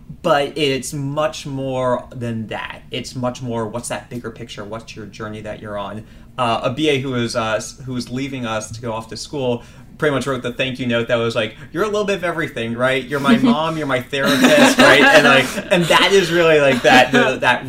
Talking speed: 225 wpm